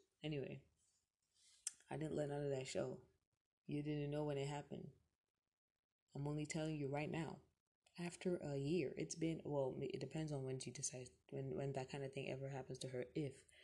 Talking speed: 190 wpm